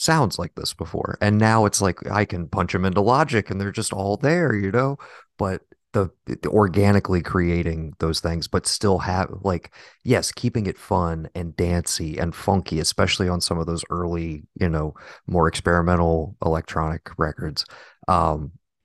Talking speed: 170 wpm